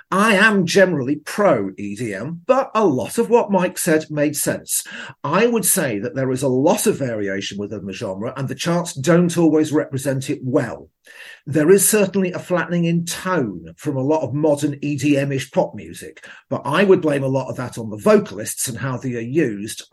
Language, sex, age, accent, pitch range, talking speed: English, male, 50-69, British, 130-180 Hz, 195 wpm